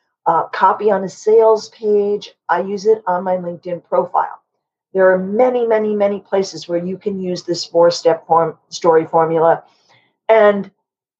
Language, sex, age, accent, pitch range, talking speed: English, female, 40-59, American, 175-225 Hz, 150 wpm